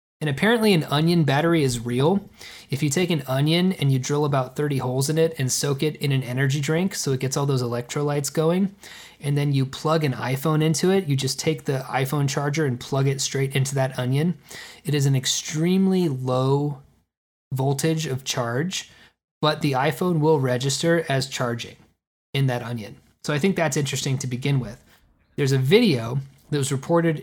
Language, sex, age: English, male, 20-39